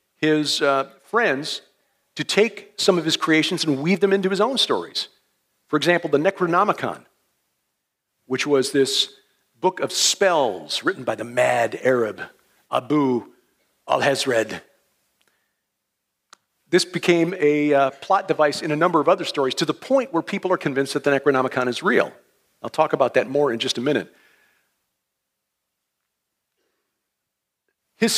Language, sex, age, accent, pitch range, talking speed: English, male, 50-69, American, 140-180 Hz, 145 wpm